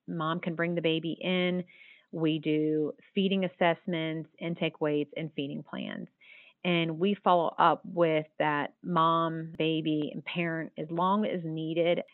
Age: 30-49